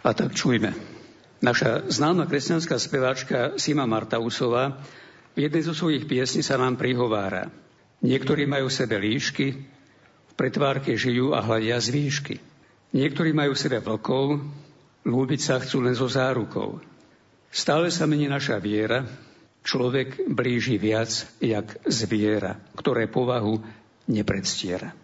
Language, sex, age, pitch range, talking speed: Slovak, male, 60-79, 110-145 Hz, 120 wpm